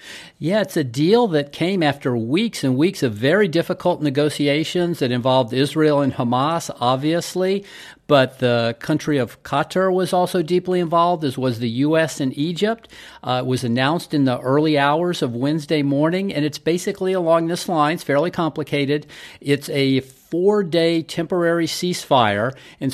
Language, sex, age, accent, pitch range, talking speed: English, male, 50-69, American, 130-165 Hz, 160 wpm